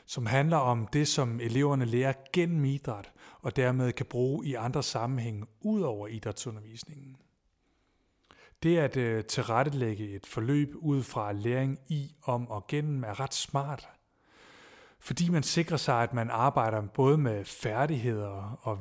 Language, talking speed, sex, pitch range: Danish, 140 wpm, male, 115-145 Hz